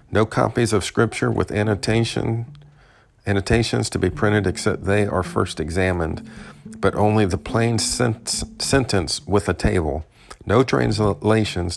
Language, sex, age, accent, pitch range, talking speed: English, male, 50-69, American, 95-115 Hz, 125 wpm